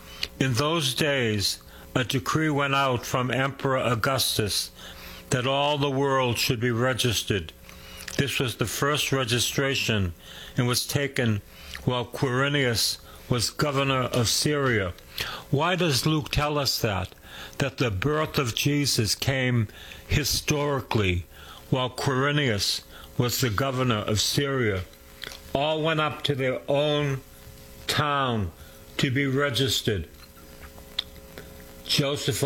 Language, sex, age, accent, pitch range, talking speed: English, male, 60-79, American, 100-140 Hz, 115 wpm